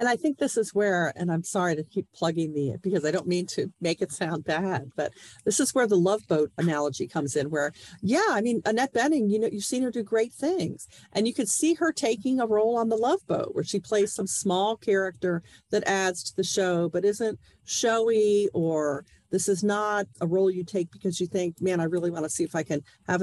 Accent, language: American, English